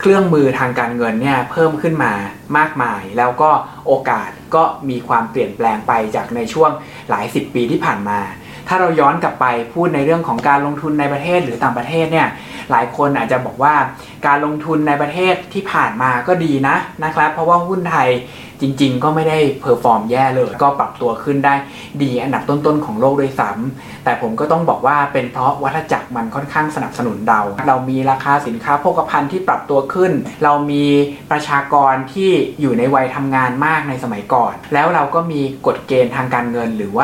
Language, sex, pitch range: Thai, male, 125-155 Hz